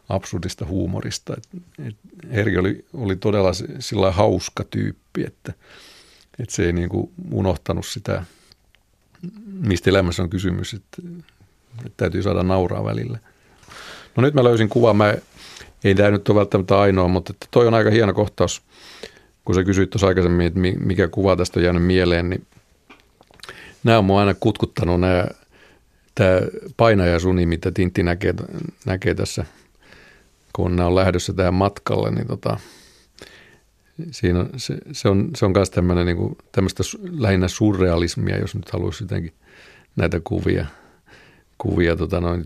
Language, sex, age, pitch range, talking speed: Finnish, male, 50-69, 90-105 Hz, 135 wpm